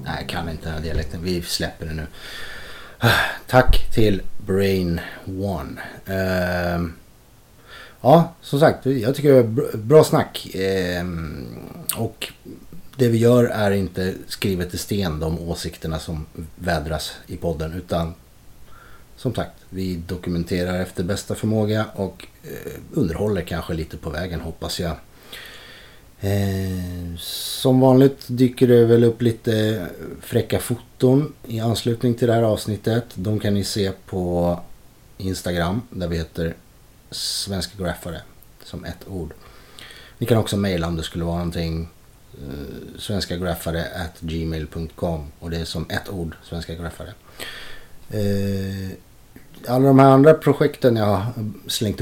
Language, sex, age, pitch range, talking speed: English, male, 30-49, 85-115 Hz, 125 wpm